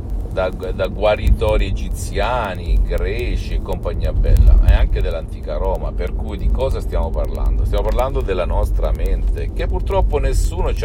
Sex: male